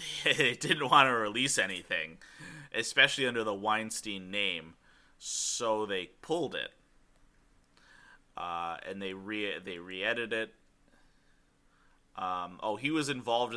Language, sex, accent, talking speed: English, male, American, 120 wpm